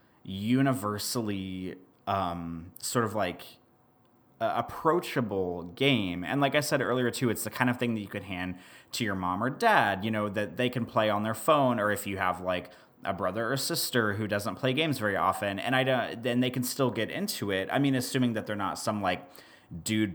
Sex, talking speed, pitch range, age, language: male, 210 wpm, 95-120 Hz, 30-49, English